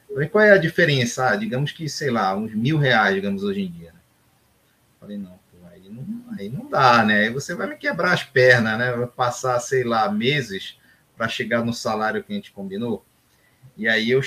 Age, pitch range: 30-49, 115-165 Hz